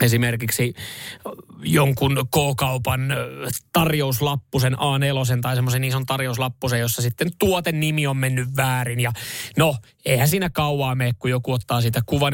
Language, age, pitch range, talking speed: Finnish, 20-39, 125-160 Hz, 130 wpm